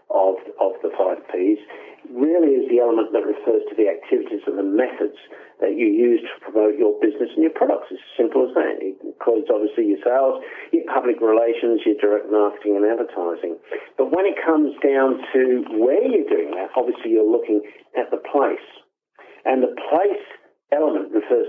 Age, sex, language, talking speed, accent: 50-69, male, English, 185 wpm, British